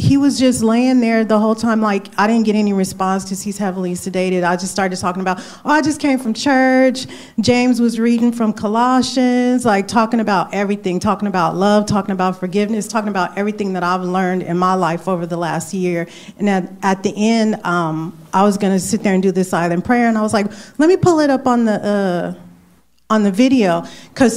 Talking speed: 220 wpm